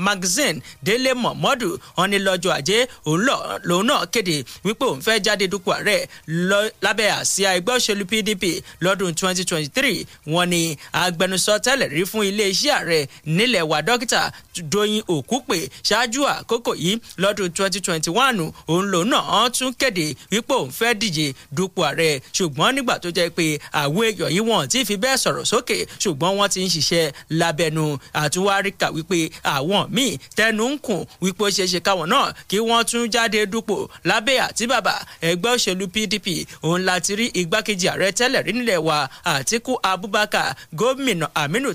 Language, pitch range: English, 170-220 Hz